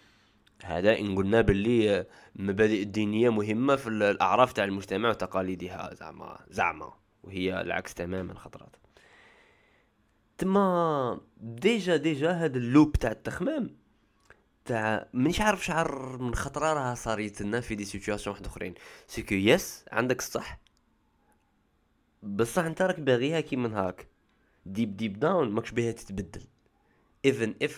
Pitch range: 95-120 Hz